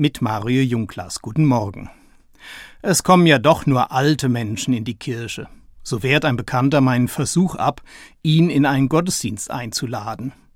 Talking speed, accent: 155 wpm, German